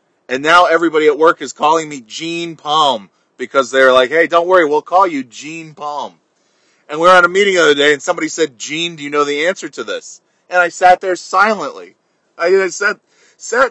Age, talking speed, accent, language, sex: 30-49, 215 wpm, American, English, male